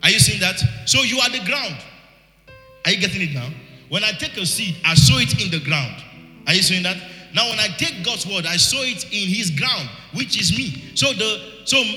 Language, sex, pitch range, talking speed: English, male, 140-180 Hz, 235 wpm